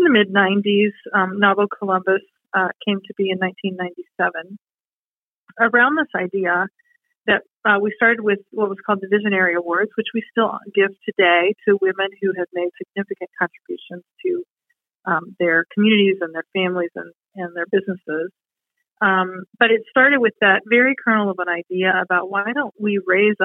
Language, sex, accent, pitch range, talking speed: English, female, American, 185-225 Hz, 165 wpm